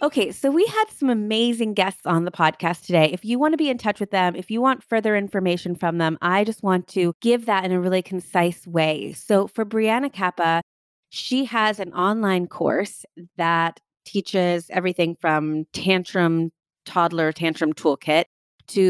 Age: 30-49